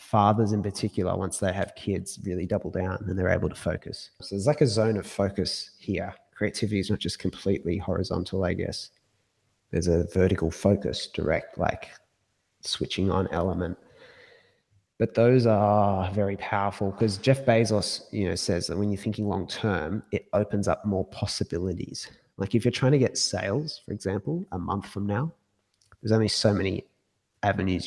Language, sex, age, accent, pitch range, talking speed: English, male, 20-39, Australian, 95-110 Hz, 175 wpm